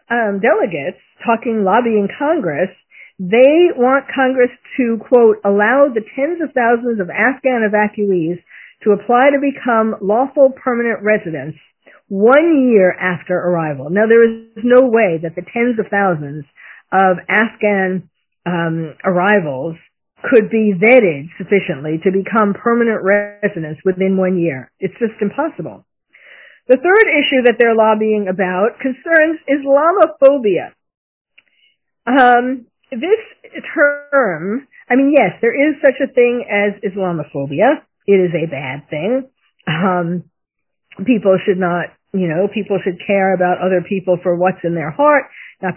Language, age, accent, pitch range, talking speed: English, 50-69, American, 185-255 Hz, 135 wpm